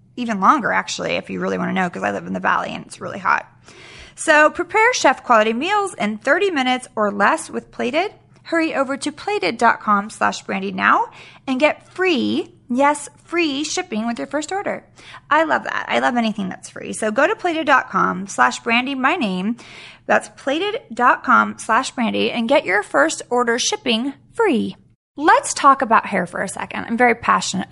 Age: 20-39